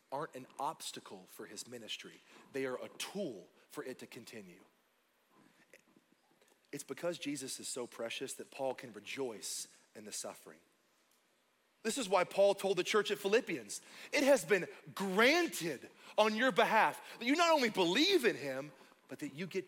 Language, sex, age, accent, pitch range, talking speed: English, male, 30-49, American, 145-215 Hz, 165 wpm